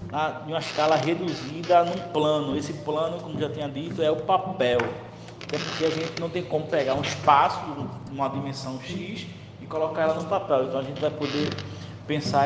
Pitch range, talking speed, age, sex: 135-165 Hz, 190 wpm, 20-39, male